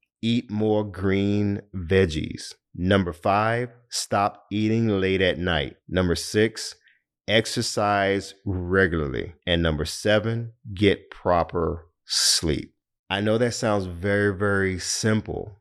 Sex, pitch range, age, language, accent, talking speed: male, 90-110 Hz, 40-59, English, American, 110 wpm